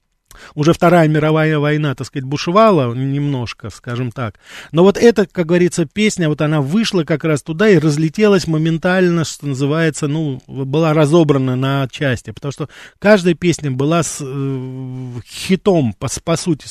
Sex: male